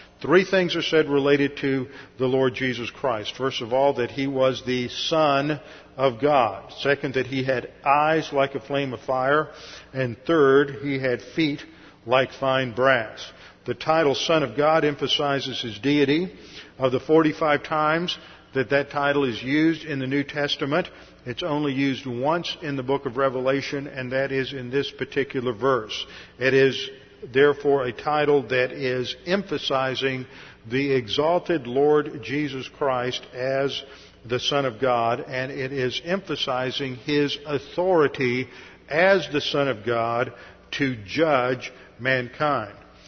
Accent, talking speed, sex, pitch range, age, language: American, 150 wpm, male, 130-150 Hz, 50-69, English